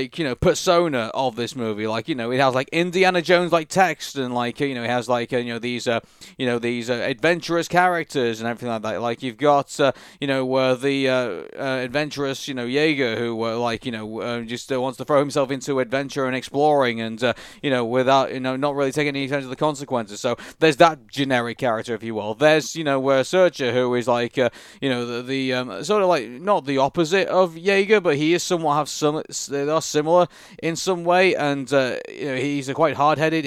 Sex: male